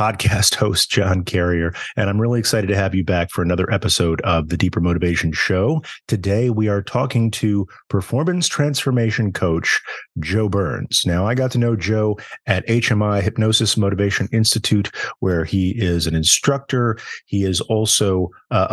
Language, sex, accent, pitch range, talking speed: English, male, American, 95-115 Hz, 160 wpm